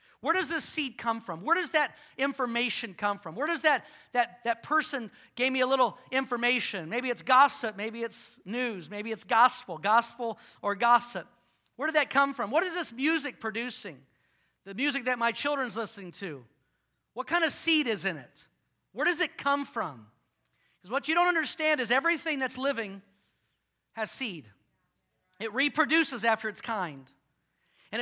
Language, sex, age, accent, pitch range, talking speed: English, male, 40-59, American, 195-265 Hz, 170 wpm